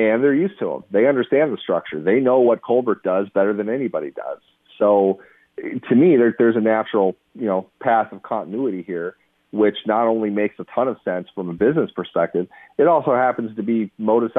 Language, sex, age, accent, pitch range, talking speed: English, male, 40-59, American, 95-115 Hz, 205 wpm